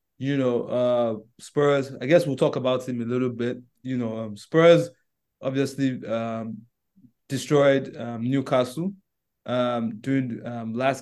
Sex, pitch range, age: male, 120-145 Hz, 20-39